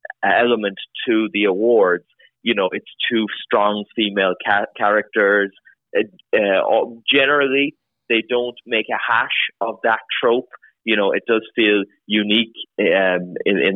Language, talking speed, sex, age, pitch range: English, 130 wpm, male, 20-39, 95-115 Hz